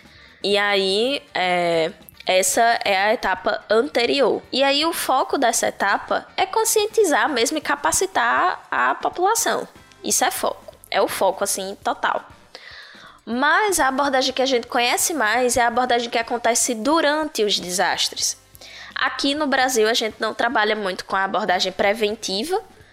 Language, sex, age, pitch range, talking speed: Portuguese, female, 10-29, 195-265 Hz, 145 wpm